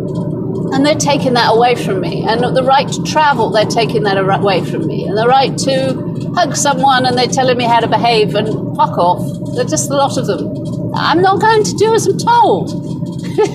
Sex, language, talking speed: female, English, 215 wpm